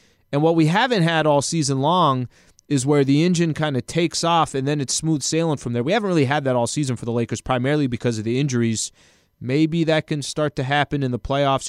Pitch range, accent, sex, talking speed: 120-150 Hz, American, male, 240 wpm